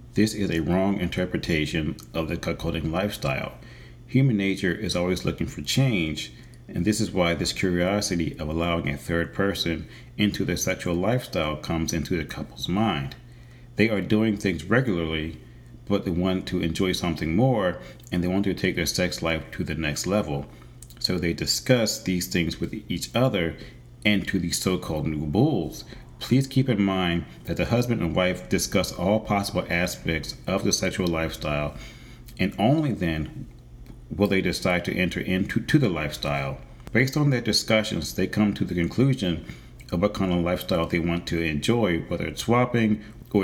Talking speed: 175 wpm